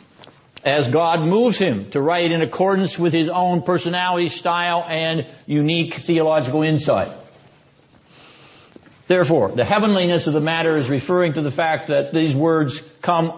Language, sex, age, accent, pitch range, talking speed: English, male, 60-79, American, 140-175 Hz, 145 wpm